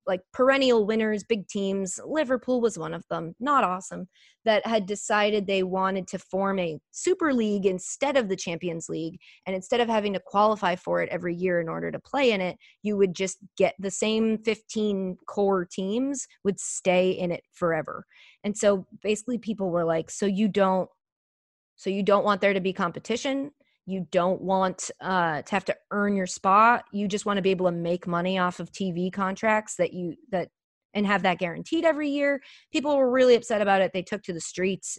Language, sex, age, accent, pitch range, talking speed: English, female, 20-39, American, 180-230 Hz, 200 wpm